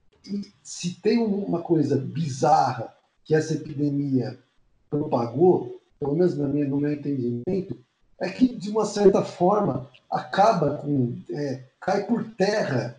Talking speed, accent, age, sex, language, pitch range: 135 wpm, Brazilian, 50-69, male, Portuguese, 145-185 Hz